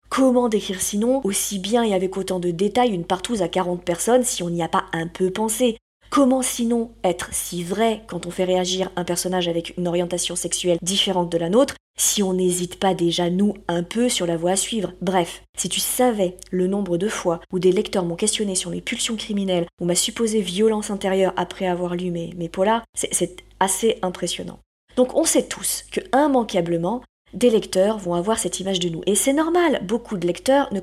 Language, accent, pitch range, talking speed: French, French, 180-220 Hz, 210 wpm